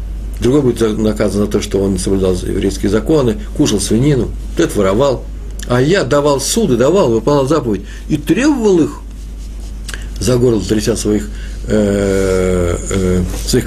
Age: 50-69